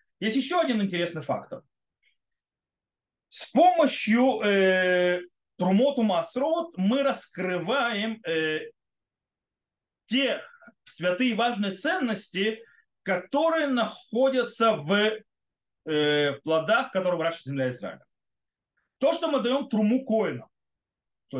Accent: native